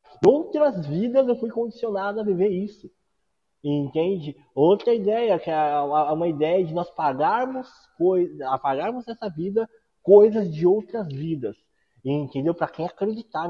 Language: Portuguese